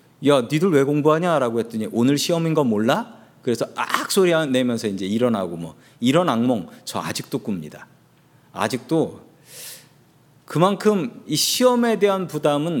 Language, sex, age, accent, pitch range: Korean, male, 40-59, native, 125-175 Hz